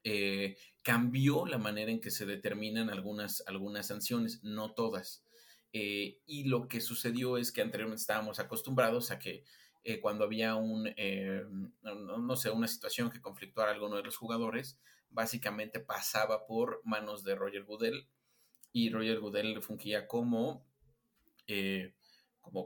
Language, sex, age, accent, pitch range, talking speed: Spanish, male, 30-49, Mexican, 105-120 Hz, 150 wpm